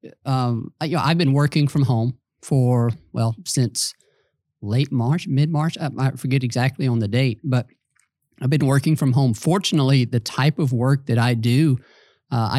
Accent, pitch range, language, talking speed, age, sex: American, 120-145 Hz, English, 180 wpm, 50-69, male